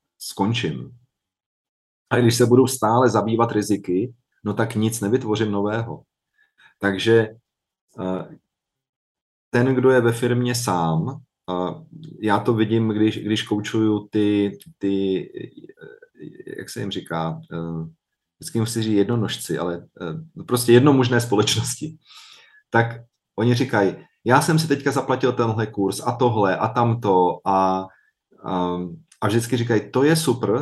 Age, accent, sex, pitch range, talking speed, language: 30-49, native, male, 100-125 Hz, 120 wpm, Czech